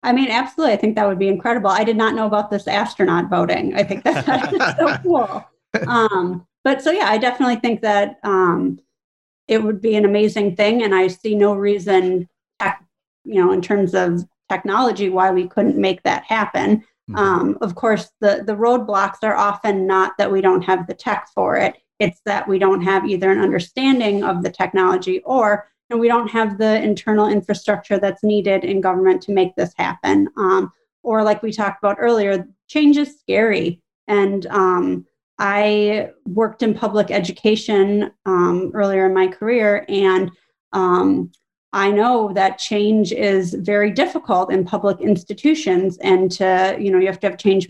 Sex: female